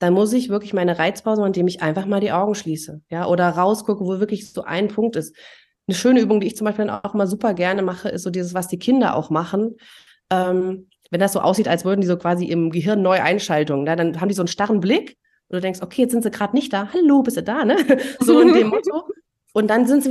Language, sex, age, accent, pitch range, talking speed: German, female, 30-49, German, 190-245 Hz, 265 wpm